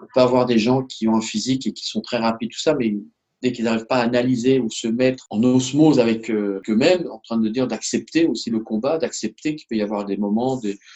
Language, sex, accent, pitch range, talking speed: French, male, French, 110-155 Hz, 250 wpm